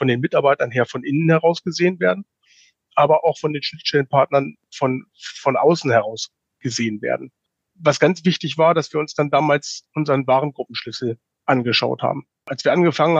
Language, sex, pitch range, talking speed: German, male, 135-160 Hz, 160 wpm